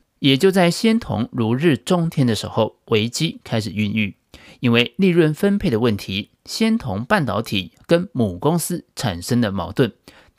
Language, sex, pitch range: Chinese, male, 110-165 Hz